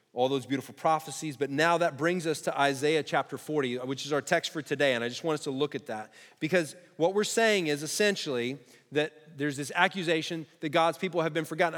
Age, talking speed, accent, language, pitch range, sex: 30-49, 225 wpm, American, English, 125-170 Hz, male